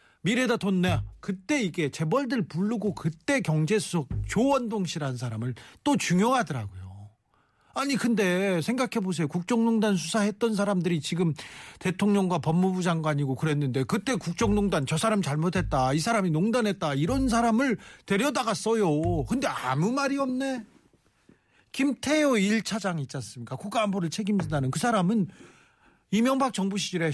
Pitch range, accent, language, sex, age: 150-225 Hz, native, Korean, male, 40-59